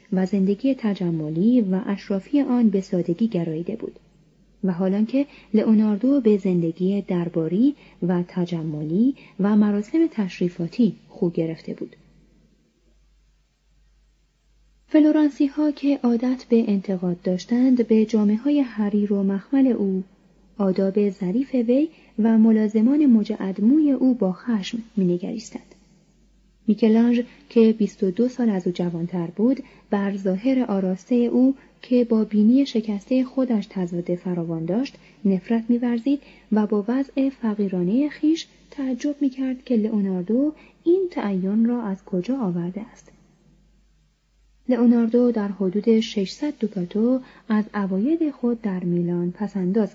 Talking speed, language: 120 wpm, Persian